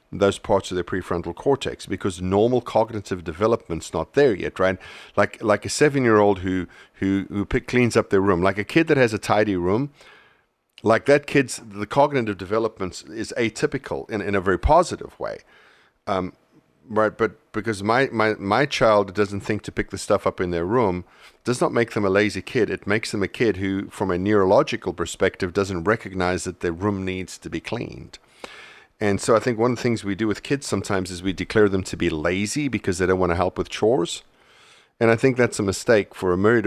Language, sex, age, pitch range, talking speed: English, male, 40-59, 90-110 Hz, 210 wpm